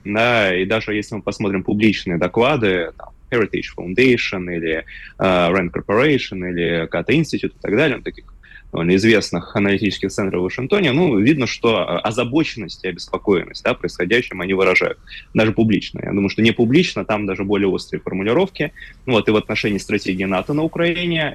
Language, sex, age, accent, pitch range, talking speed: Russian, male, 20-39, native, 95-115 Hz, 165 wpm